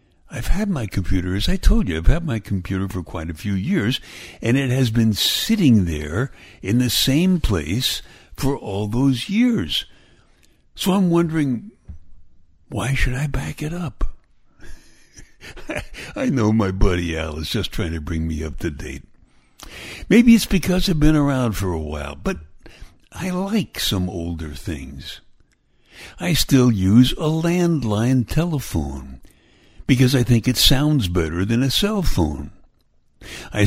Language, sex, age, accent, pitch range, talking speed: English, male, 60-79, American, 90-140 Hz, 155 wpm